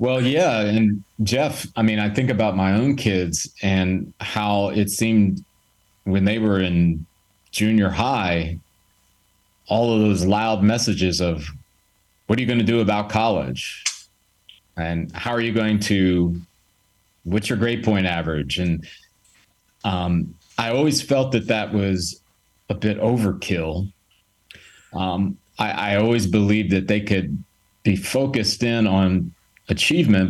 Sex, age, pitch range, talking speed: male, 30-49, 95-110 Hz, 140 wpm